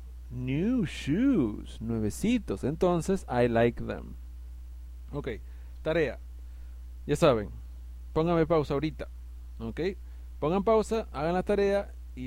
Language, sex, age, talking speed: English, male, 40-59, 105 wpm